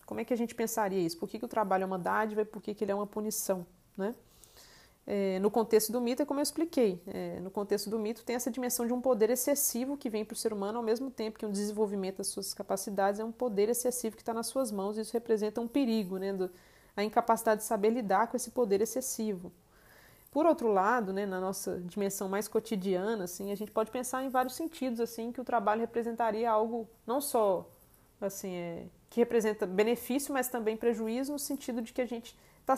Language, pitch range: Portuguese, 205-235 Hz